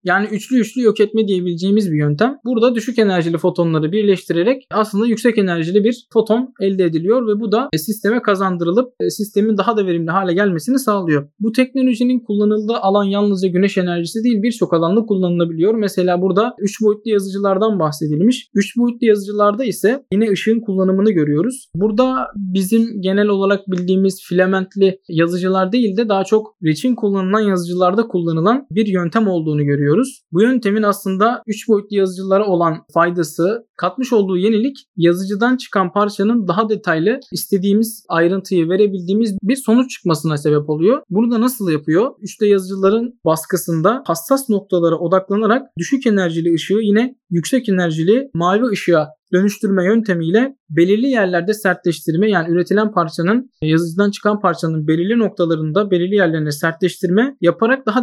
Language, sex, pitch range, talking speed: Turkish, male, 175-220 Hz, 140 wpm